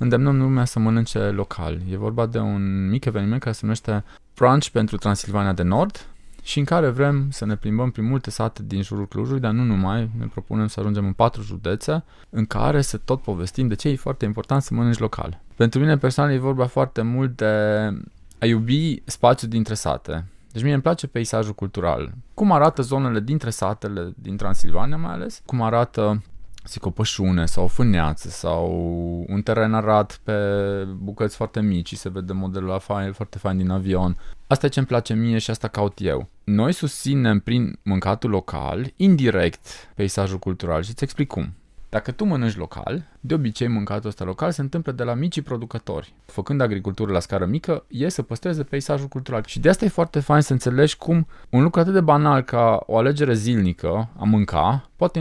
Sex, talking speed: male, 190 wpm